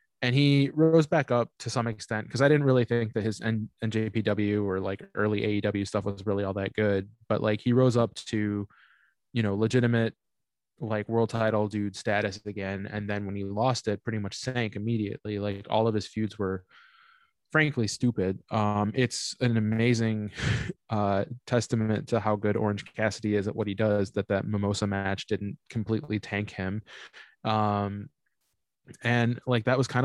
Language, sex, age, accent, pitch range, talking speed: English, male, 20-39, American, 105-120 Hz, 180 wpm